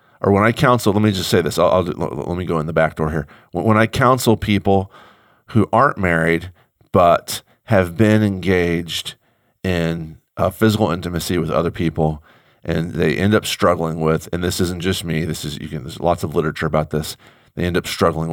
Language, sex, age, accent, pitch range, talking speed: English, male, 40-59, American, 85-110 Hz, 205 wpm